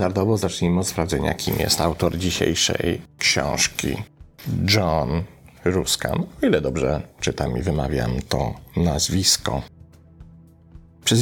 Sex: male